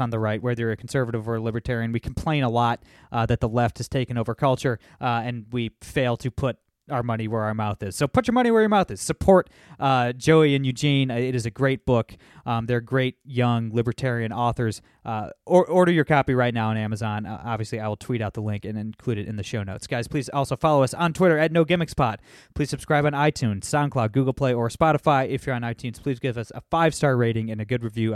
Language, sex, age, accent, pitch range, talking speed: English, male, 20-39, American, 115-140 Hz, 245 wpm